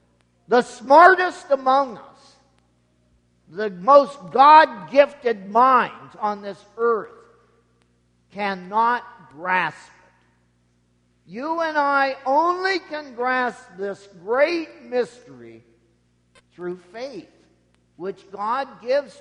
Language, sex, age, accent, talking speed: English, male, 50-69, American, 85 wpm